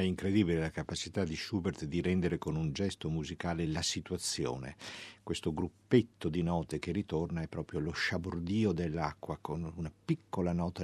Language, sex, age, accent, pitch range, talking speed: Italian, male, 50-69, native, 80-105 Hz, 160 wpm